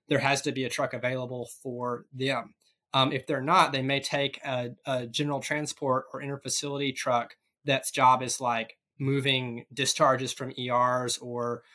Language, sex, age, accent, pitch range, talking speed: English, male, 20-39, American, 125-145 Hz, 165 wpm